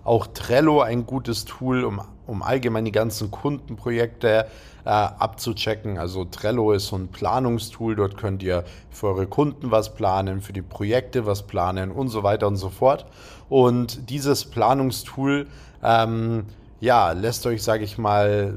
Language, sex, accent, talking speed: German, male, German, 155 wpm